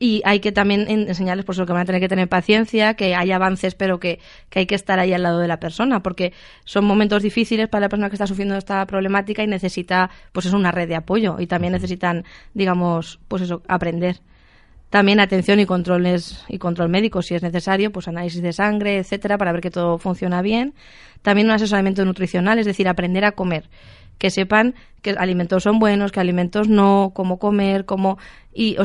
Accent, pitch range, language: Spanish, 180-205 Hz, Spanish